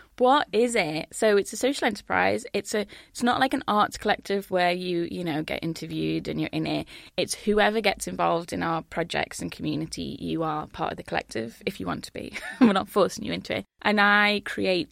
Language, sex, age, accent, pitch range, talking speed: English, female, 20-39, British, 160-200 Hz, 220 wpm